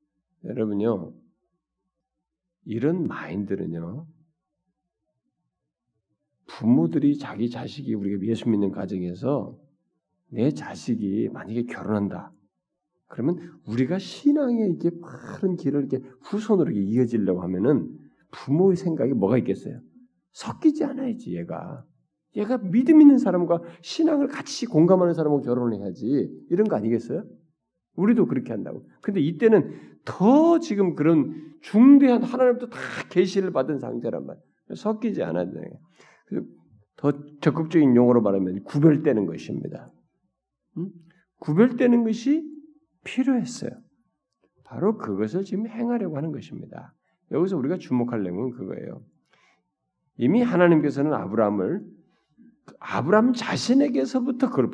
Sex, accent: male, native